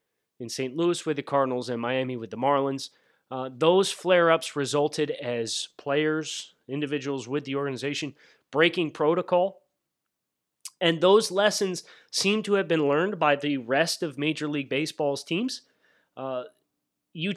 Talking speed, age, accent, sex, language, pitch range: 140 wpm, 30-49, American, male, English, 145-195 Hz